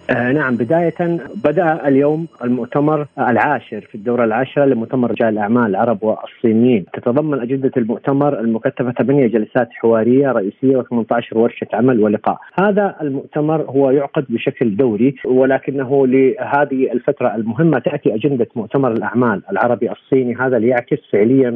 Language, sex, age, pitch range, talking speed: Arabic, male, 40-59, 120-155 Hz, 130 wpm